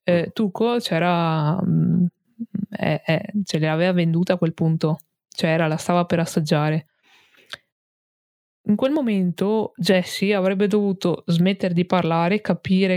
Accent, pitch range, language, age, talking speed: native, 170-195 Hz, Italian, 20-39, 115 wpm